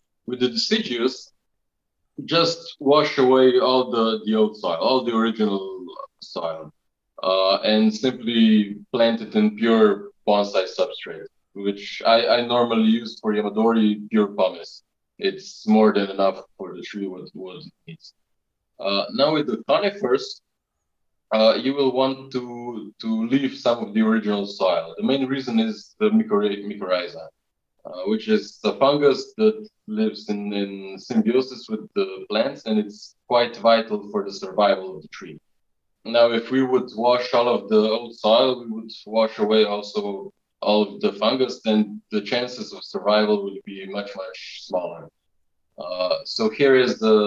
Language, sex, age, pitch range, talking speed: English, male, 20-39, 105-145 Hz, 155 wpm